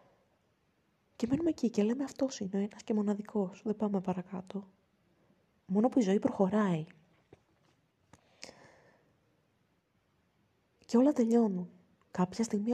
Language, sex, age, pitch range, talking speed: Greek, female, 20-39, 185-230 Hz, 115 wpm